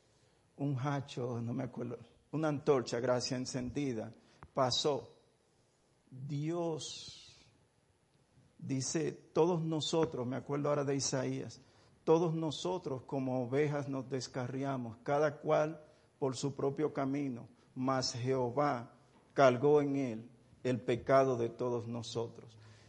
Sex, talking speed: male, 105 wpm